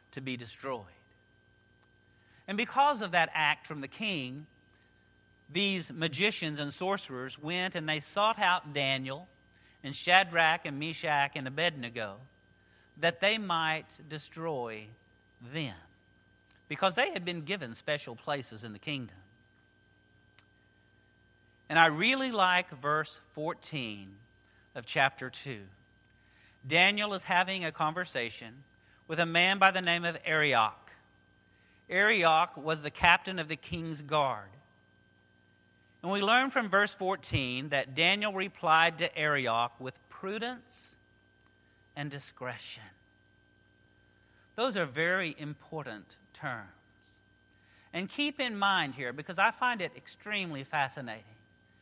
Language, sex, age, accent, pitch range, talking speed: English, male, 50-69, American, 105-170 Hz, 120 wpm